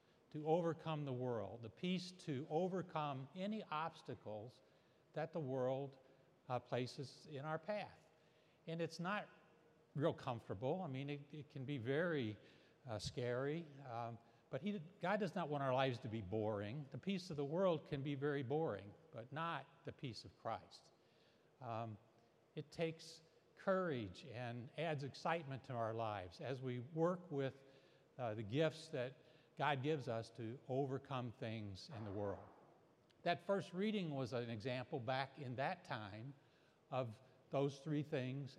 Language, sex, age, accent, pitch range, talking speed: English, male, 60-79, American, 120-160 Hz, 155 wpm